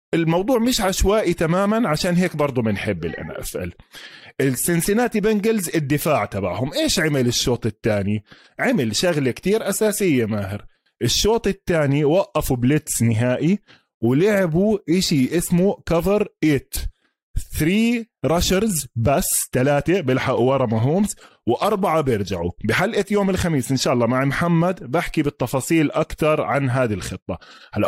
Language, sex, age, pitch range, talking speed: Arabic, male, 20-39, 125-180 Hz, 125 wpm